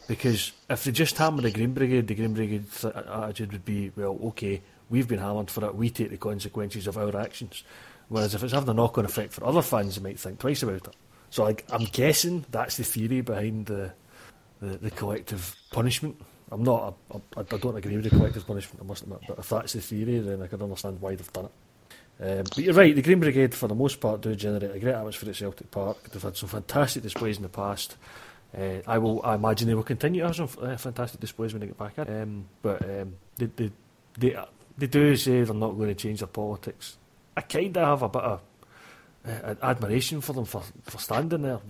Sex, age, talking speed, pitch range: male, 30-49, 235 wpm, 105-125 Hz